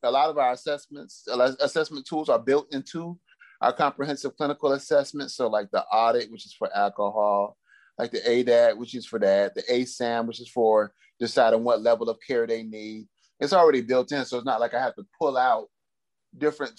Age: 30-49